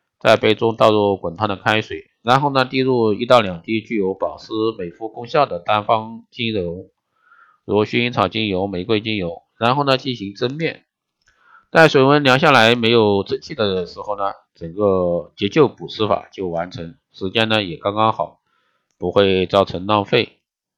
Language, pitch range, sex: Chinese, 100-125 Hz, male